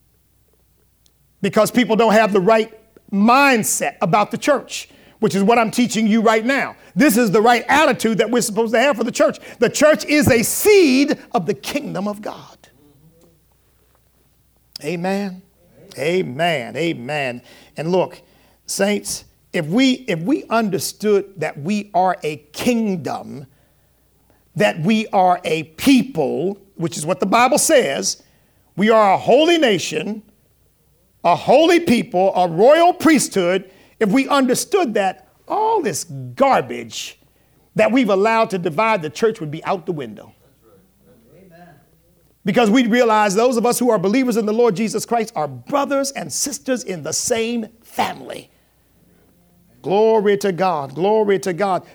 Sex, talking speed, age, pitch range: male, 145 wpm, 50-69, 180-245 Hz